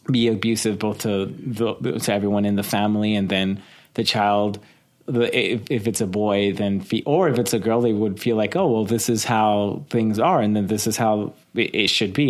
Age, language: 30-49, English